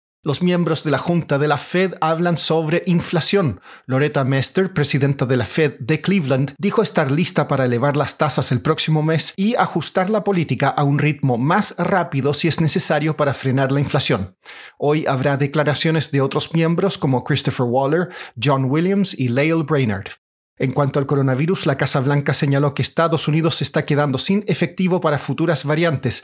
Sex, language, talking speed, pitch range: male, Spanish, 180 wpm, 140-170 Hz